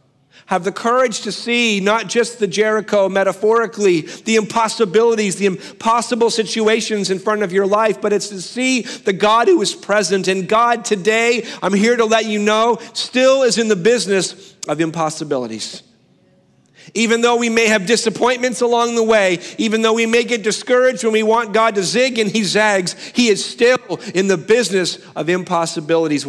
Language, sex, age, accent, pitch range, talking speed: English, male, 40-59, American, 175-230 Hz, 175 wpm